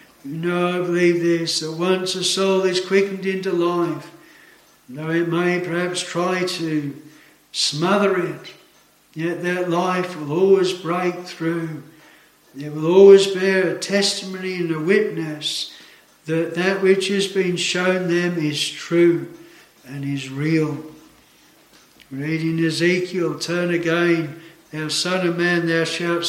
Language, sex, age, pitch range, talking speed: English, male, 60-79, 160-185 Hz, 135 wpm